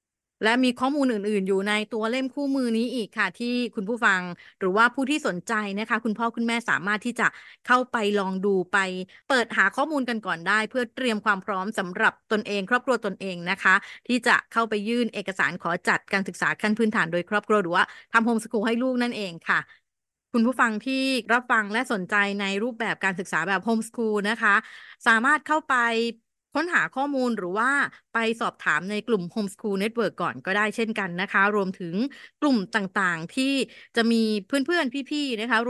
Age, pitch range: 30-49, 200-245 Hz